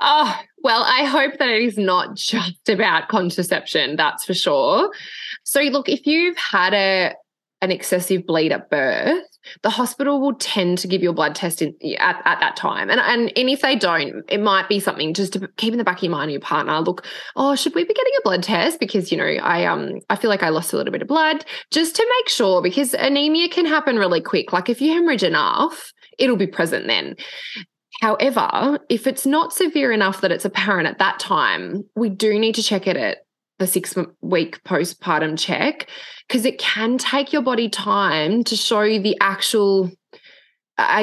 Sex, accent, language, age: female, Australian, English, 20-39